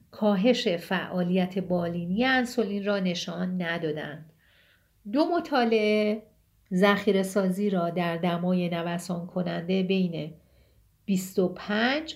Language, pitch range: Persian, 170-215 Hz